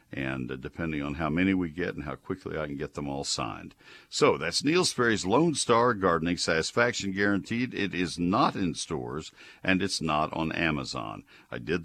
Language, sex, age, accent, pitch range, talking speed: English, male, 60-79, American, 80-110 Hz, 185 wpm